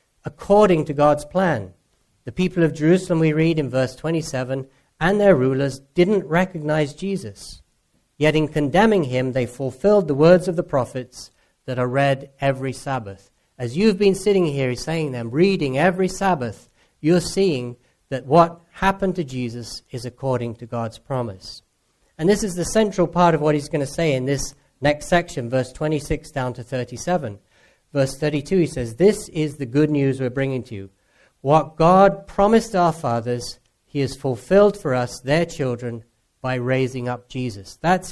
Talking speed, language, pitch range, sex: 170 wpm, English, 130-175 Hz, male